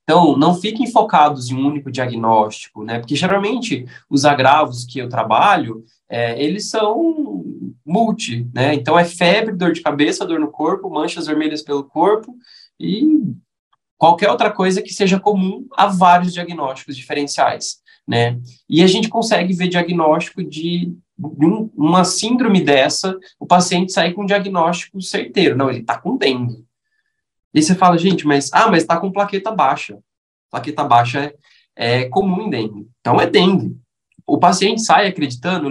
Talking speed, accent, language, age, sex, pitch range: 160 wpm, Brazilian, Portuguese, 20-39, male, 130-195 Hz